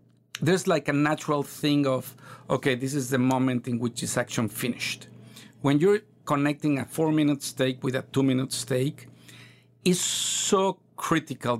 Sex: male